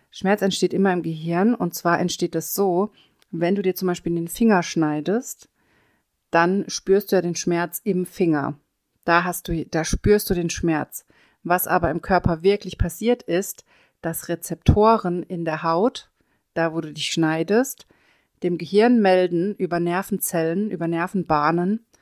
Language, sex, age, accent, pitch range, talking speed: German, female, 40-59, German, 165-195 Hz, 160 wpm